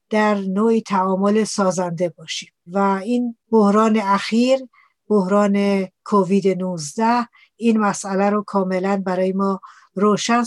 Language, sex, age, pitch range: Persian, female, 60-79, 195-230 Hz